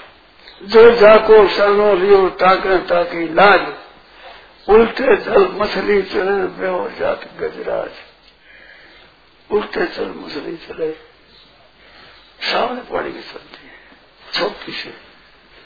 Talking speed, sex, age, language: 75 wpm, male, 60-79, Hindi